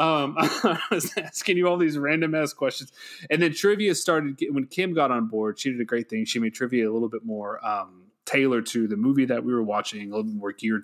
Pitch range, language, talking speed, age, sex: 110-140 Hz, English, 250 wpm, 30-49, male